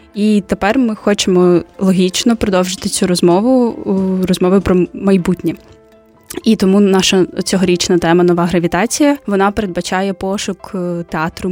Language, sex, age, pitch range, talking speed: Ukrainian, female, 20-39, 185-215 Hz, 115 wpm